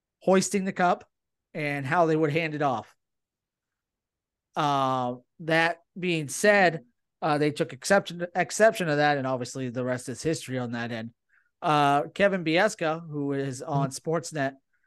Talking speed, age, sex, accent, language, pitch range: 150 wpm, 30-49, male, American, English, 130-160 Hz